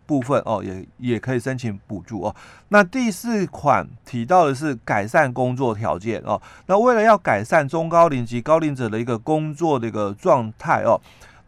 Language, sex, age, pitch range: Chinese, male, 30-49, 120-180 Hz